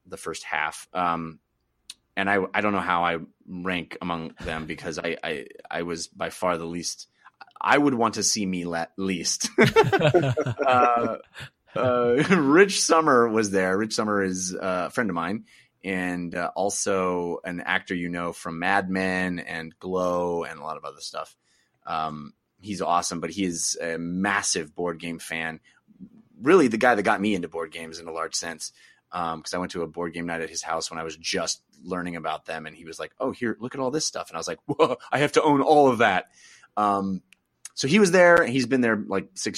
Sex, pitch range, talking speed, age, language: male, 80-105 Hz, 210 wpm, 30-49, English